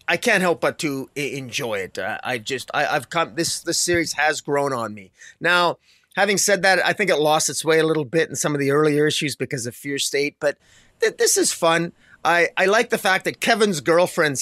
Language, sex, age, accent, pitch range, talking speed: English, male, 30-49, American, 140-165 Hz, 220 wpm